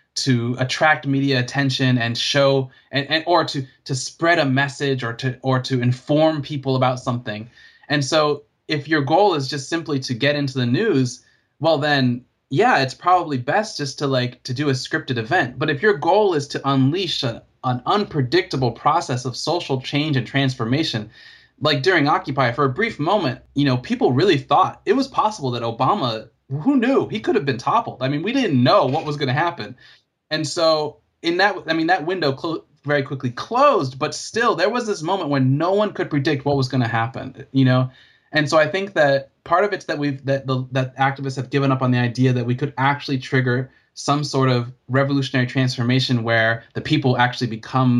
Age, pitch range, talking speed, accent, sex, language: 20-39, 130-155 Hz, 200 wpm, American, male, English